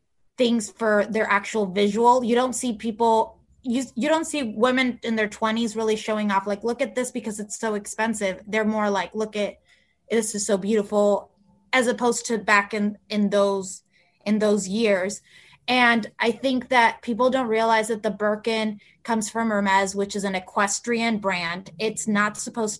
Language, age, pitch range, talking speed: English, 20-39, 200-235 Hz, 180 wpm